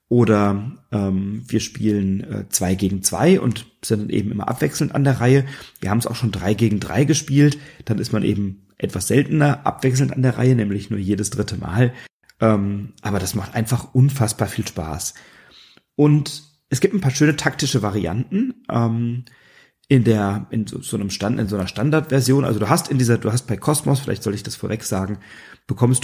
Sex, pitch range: male, 105-130 Hz